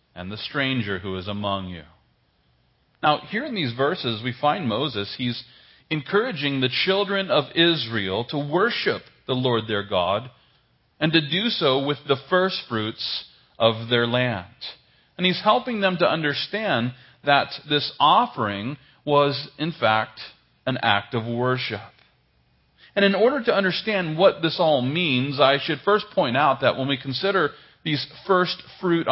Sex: male